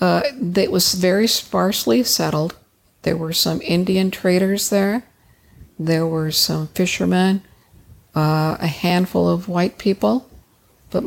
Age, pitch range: 60-79, 165-190 Hz